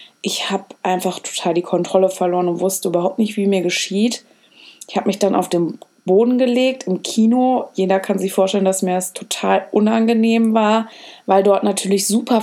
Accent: German